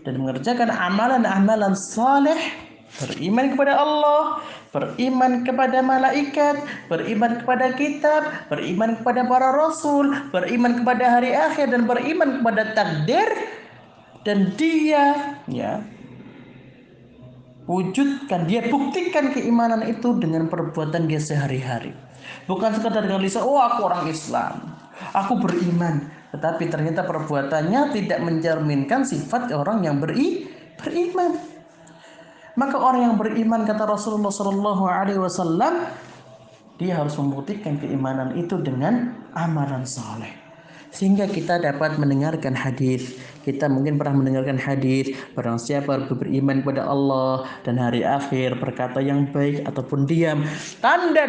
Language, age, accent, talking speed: Indonesian, 30-49, native, 115 wpm